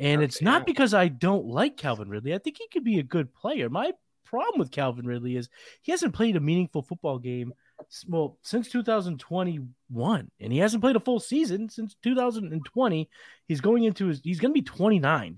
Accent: American